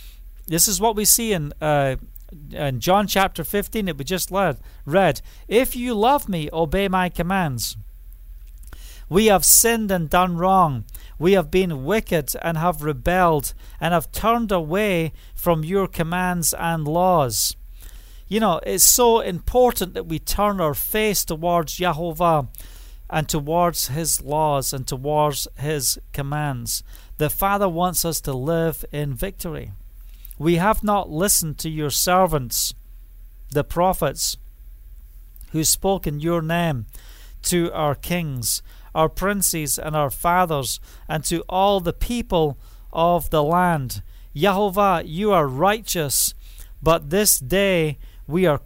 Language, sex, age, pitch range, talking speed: English, male, 40-59, 135-185 Hz, 140 wpm